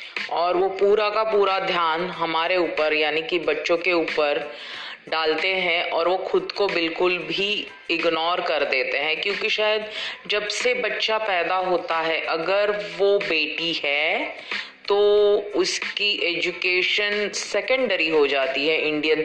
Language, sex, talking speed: Hindi, female, 140 wpm